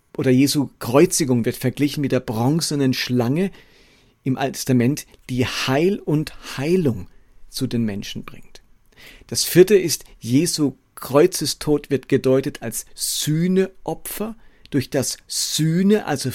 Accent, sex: German, male